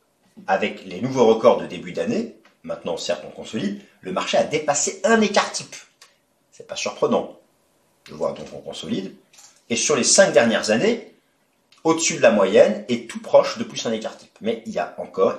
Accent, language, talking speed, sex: French, French, 185 wpm, male